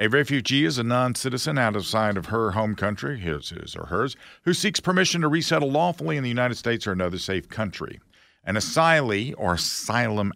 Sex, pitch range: male, 85-115 Hz